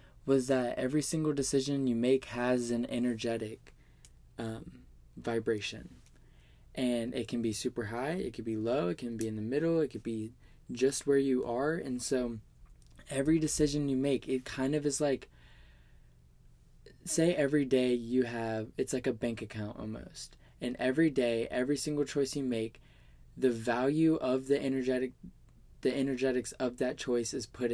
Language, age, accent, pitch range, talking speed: English, 20-39, American, 110-135 Hz, 165 wpm